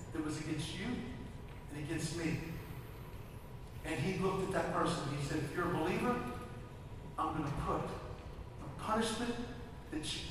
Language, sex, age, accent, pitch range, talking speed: English, male, 40-59, American, 130-165 Hz, 165 wpm